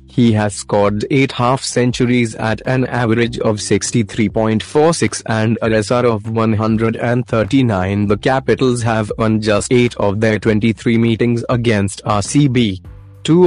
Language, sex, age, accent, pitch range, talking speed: Hindi, male, 20-39, native, 105-120 Hz, 130 wpm